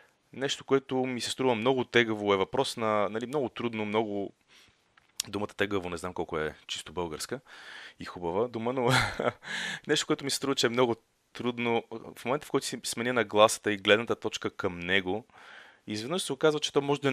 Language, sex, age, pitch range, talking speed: Bulgarian, male, 30-49, 100-130 Hz, 195 wpm